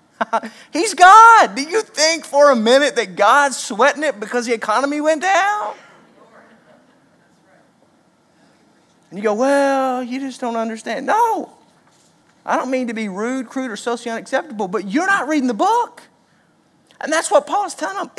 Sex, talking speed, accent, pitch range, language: male, 160 wpm, American, 240-315 Hz, English